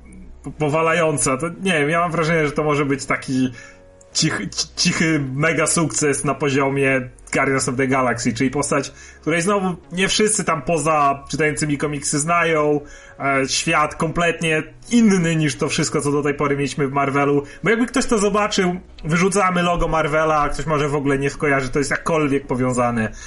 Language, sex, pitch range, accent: Polish, male, 130-160 Hz, native